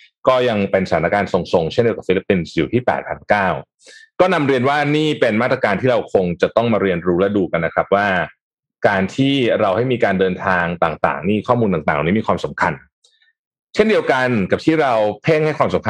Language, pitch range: Thai, 105-145 Hz